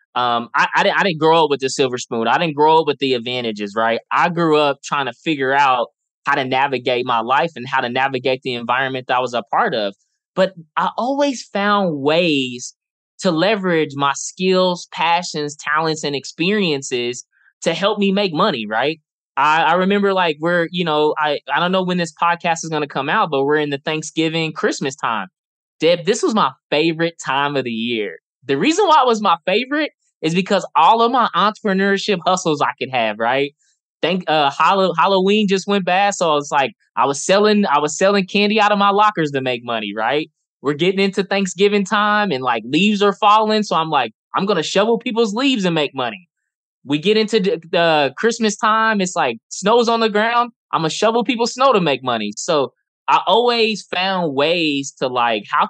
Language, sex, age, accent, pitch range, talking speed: English, male, 20-39, American, 140-200 Hz, 205 wpm